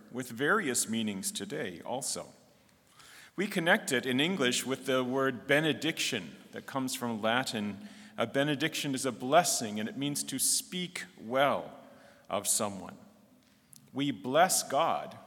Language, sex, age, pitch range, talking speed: English, male, 40-59, 125-175 Hz, 135 wpm